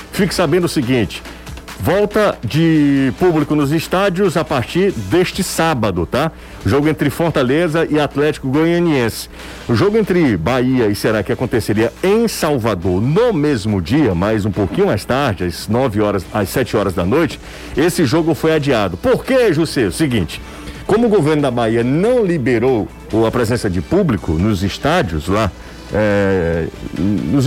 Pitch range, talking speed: 110-165 Hz, 155 wpm